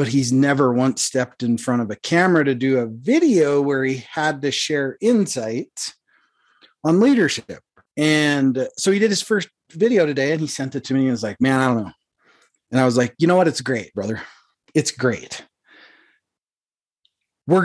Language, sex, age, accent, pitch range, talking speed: English, male, 30-49, American, 125-175 Hz, 190 wpm